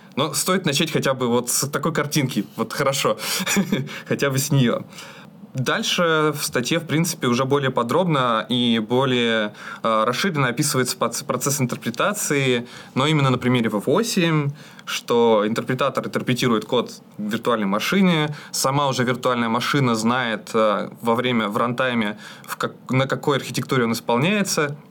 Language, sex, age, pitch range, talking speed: Russian, male, 20-39, 120-160 Hz, 135 wpm